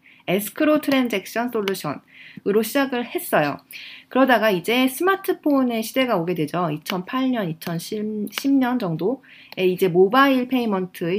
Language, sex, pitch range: Korean, female, 180-270 Hz